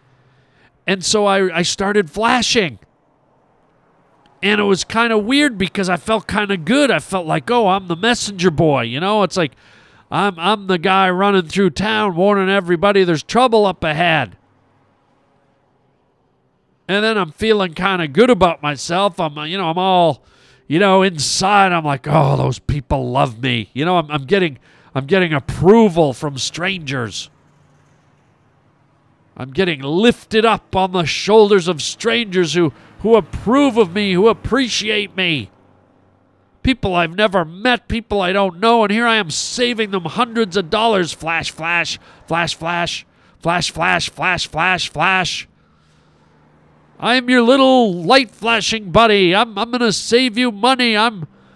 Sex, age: male, 40-59